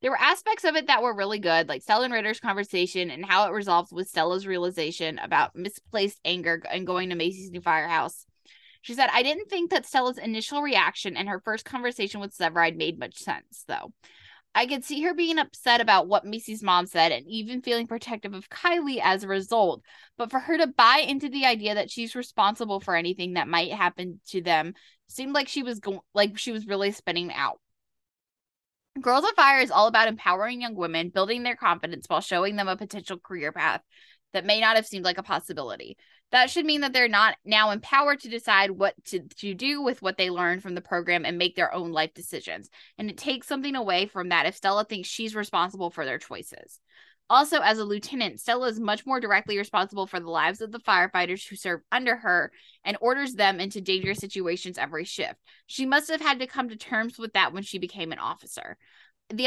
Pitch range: 180-240 Hz